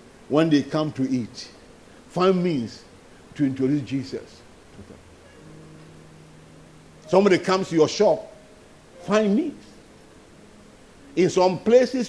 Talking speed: 110 wpm